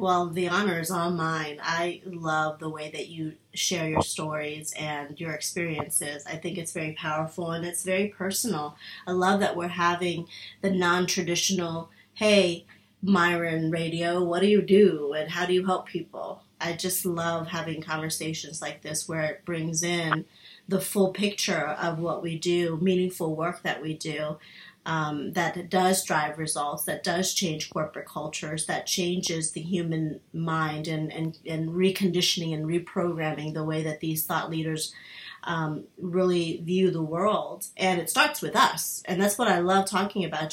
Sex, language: female, English